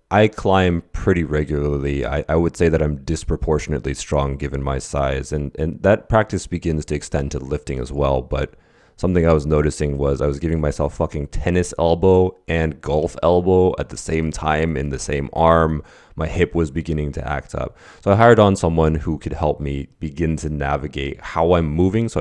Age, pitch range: 20-39, 70-85 Hz